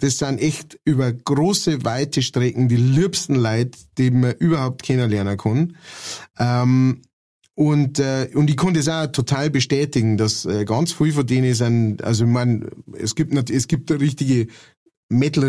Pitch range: 110-135 Hz